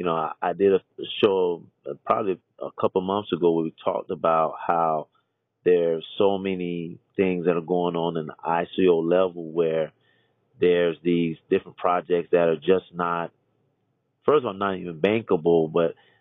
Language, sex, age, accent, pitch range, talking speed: English, male, 30-49, American, 85-100 Hz, 165 wpm